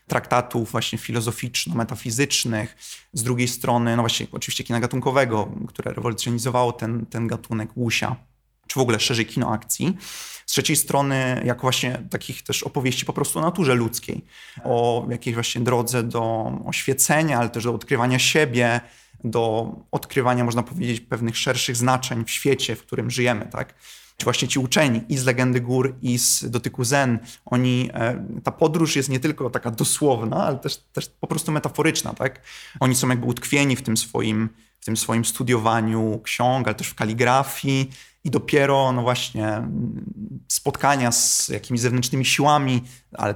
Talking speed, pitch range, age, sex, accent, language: 155 wpm, 120-135 Hz, 30-49, male, native, Polish